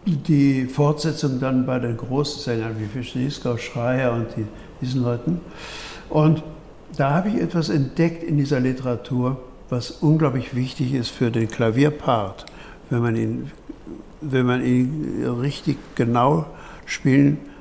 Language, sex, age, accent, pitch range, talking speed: German, male, 60-79, German, 120-150 Hz, 125 wpm